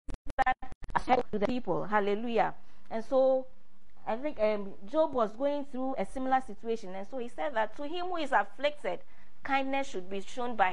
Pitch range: 205-265 Hz